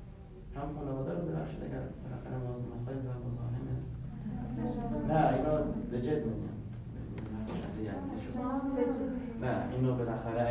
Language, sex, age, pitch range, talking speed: Persian, male, 40-59, 100-135 Hz, 115 wpm